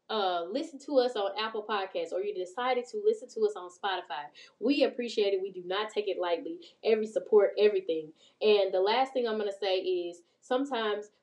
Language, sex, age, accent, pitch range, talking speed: English, female, 10-29, American, 205-290 Hz, 205 wpm